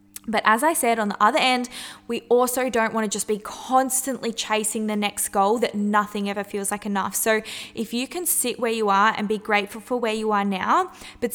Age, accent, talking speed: 10-29, Australian, 225 wpm